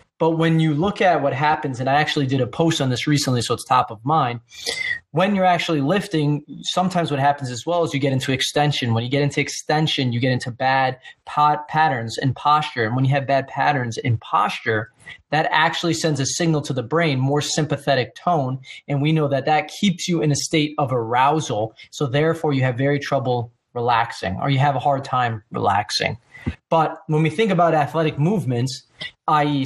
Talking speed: 205 wpm